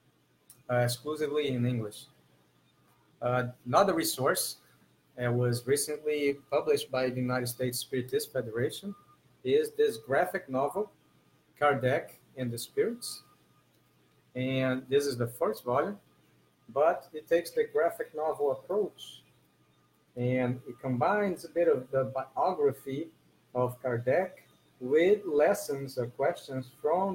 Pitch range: 125-165 Hz